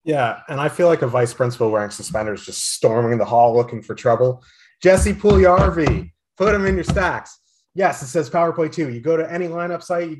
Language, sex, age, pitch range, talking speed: English, male, 30-49, 115-150 Hz, 225 wpm